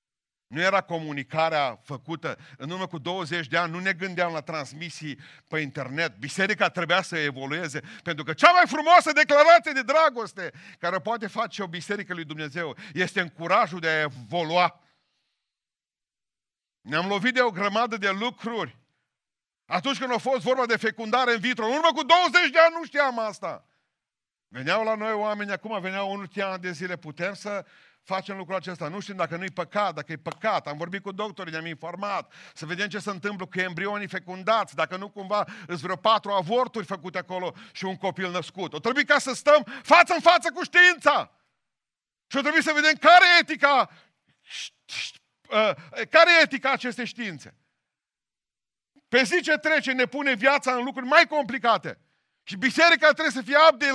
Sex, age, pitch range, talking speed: male, 50-69, 180-275 Hz, 170 wpm